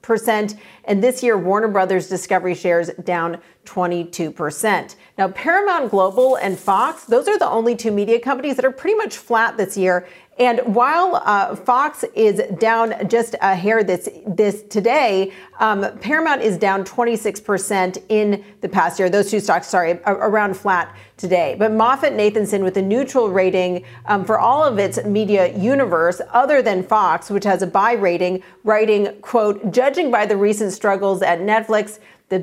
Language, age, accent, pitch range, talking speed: English, 40-59, American, 185-230 Hz, 160 wpm